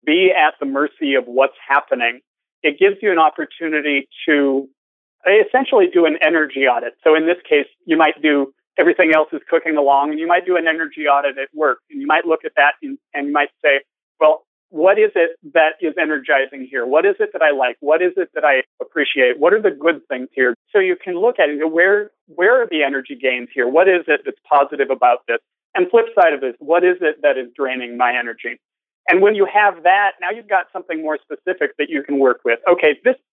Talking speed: 225 wpm